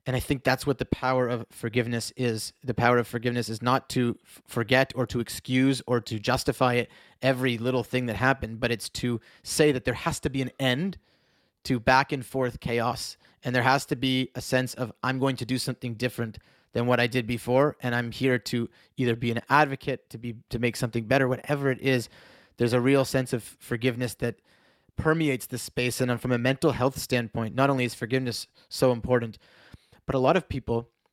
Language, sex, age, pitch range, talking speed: English, male, 30-49, 120-135 Hz, 210 wpm